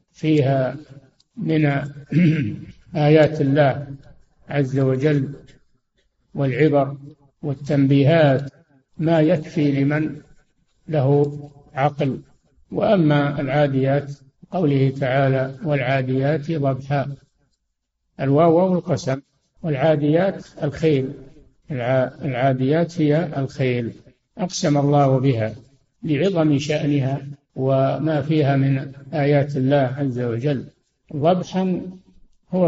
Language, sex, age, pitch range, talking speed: Arabic, male, 60-79, 135-155 Hz, 75 wpm